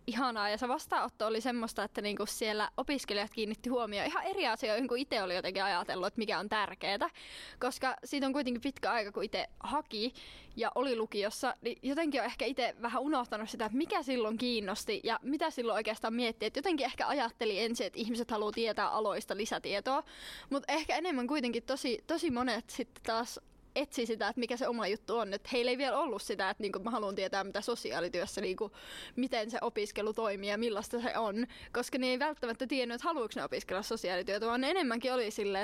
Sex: female